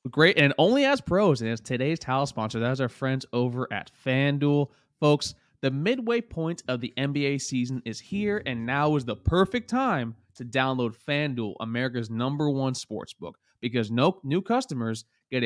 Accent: American